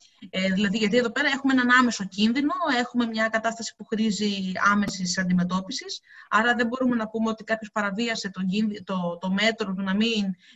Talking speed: 175 wpm